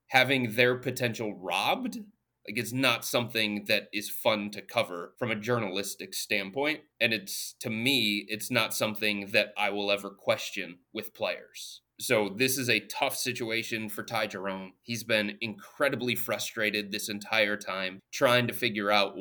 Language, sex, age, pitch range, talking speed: English, male, 30-49, 105-130 Hz, 160 wpm